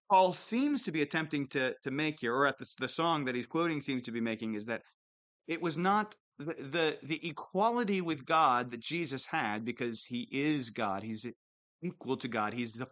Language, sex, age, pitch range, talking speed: English, male, 30-49, 150-215 Hz, 210 wpm